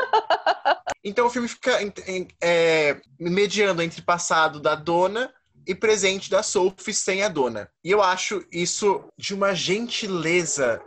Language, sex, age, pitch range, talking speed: Portuguese, male, 20-39, 155-200 Hz, 145 wpm